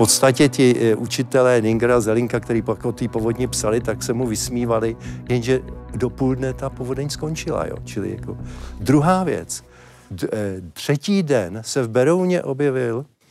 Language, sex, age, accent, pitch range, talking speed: Czech, male, 50-69, native, 115-150 Hz, 160 wpm